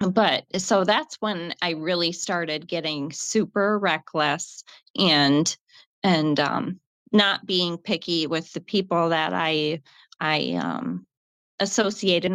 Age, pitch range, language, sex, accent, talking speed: 20-39, 160-200 Hz, English, female, American, 115 wpm